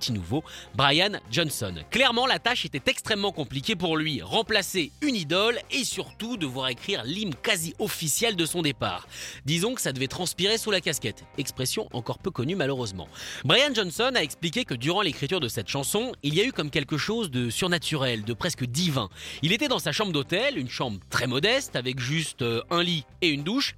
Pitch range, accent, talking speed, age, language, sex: 135-210 Hz, French, 195 wpm, 30-49, French, male